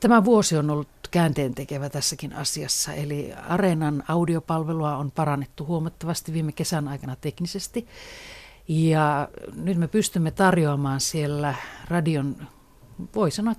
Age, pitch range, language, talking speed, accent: 50-69, 145-180 Hz, Finnish, 115 wpm, native